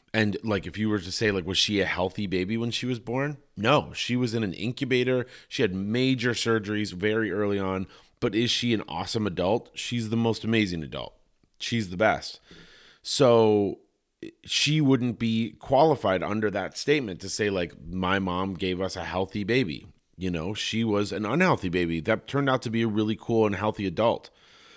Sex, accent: male, American